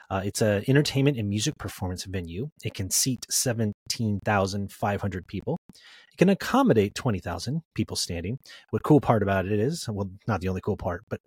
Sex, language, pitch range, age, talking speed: male, English, 100-125 Hz, 30-49, 170 wpm